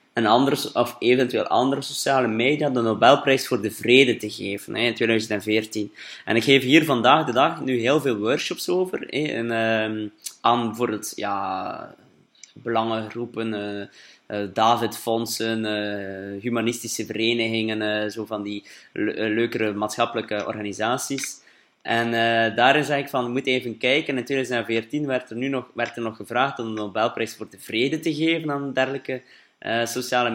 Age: 20-39